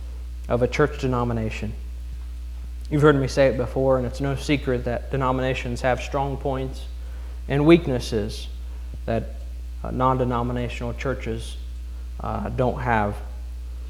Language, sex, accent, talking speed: English, male, American, 120 wpm